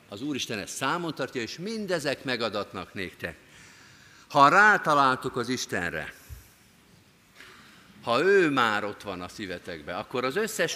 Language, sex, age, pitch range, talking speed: Hungarian, male, 50-69, 105-145 Hz, 130 wpm